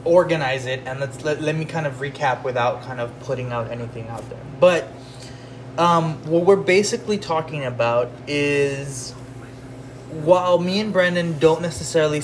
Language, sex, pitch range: English, male, 125-160 Hz